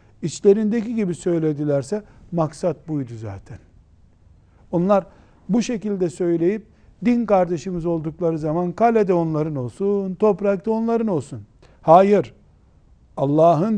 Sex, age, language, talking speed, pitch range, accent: male, 60-79, Turkish, 95 wpm, 150-190 Hz, native